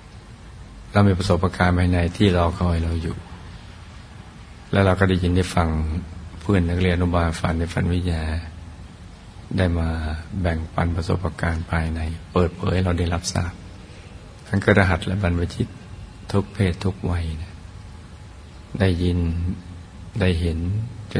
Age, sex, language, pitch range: 60-79, male, Thai, 85-95 Hz